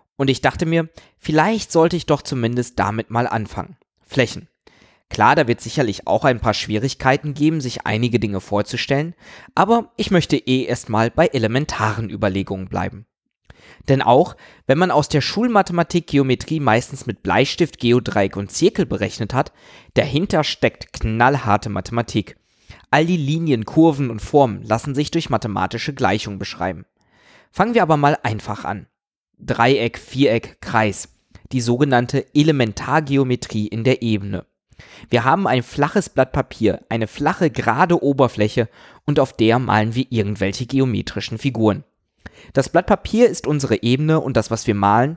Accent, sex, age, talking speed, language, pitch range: German, male, 20-39, 145 wpm, German, 110-150 Hz